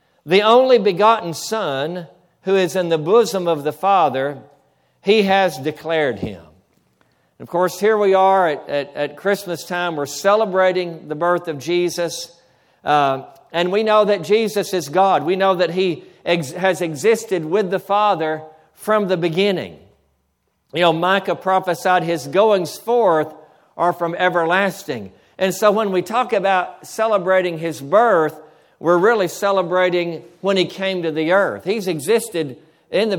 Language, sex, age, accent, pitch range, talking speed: English, male, 60-79, American, 160-195 Hz, 155 wpm